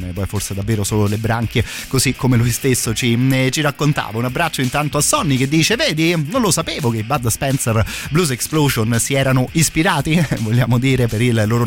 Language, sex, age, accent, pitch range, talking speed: Italian, male, 30-49, native, 115-145 Hz, 195 wpm